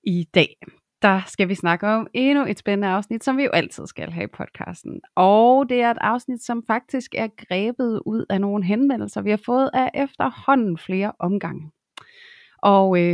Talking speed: 185 wpm